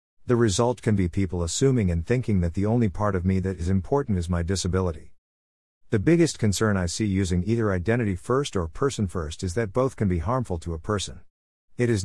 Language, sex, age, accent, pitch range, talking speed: English, male, 50-69, American, 90-115 Hz, 215 wpm